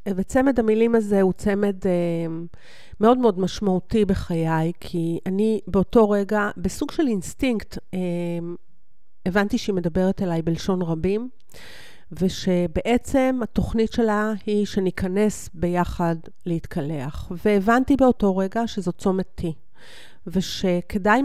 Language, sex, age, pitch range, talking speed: Hebrew, female, 40-59, 175-210 Hz, 105 wpm